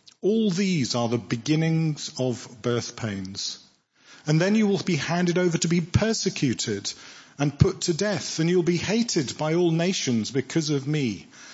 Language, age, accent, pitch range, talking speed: English, 50-69, British, 125-170 Hz, 165 wpm